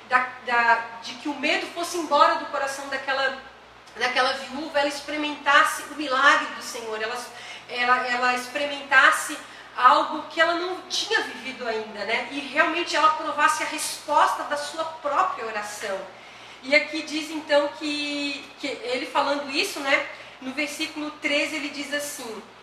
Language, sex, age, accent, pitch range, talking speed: Portuguese, female, 40-59, Brazilian, 230-295 Hz, 145 wpm